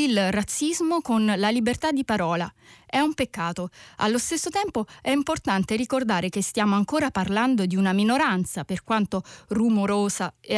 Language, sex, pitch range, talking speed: Italian, female, 190-245 Hz, 155 wpm